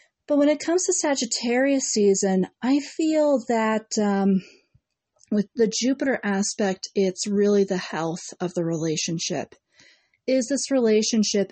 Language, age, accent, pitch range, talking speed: English, 40-59, American, 175-205 Hz, 130 wpm